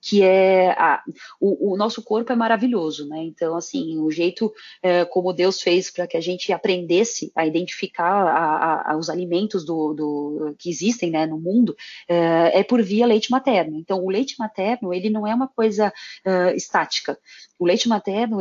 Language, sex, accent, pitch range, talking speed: Portuguese, female, Brazilian, 185-235 Hz, 160 wpm